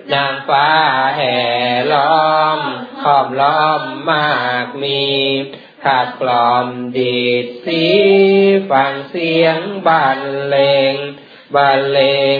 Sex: male